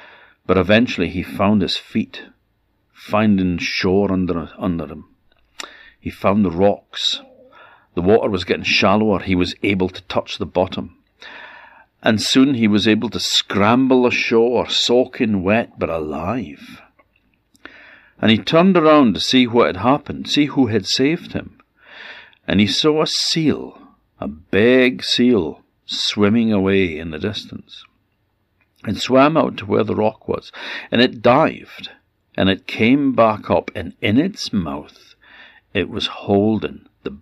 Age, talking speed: 60-79, 145 wpm